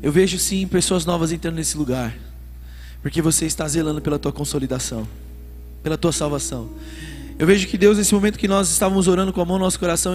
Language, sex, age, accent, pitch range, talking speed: Portuguese, male, 20-39, Brazilian, 145-190 Hz, 200 wpm